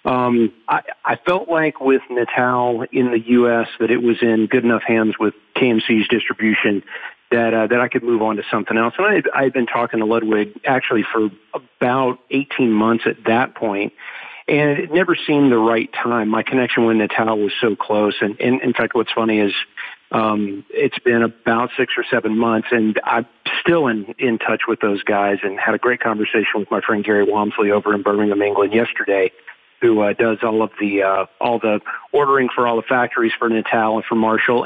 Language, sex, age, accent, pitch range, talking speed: English, male, 40-59, American, 110-125 Hz, 205 wpm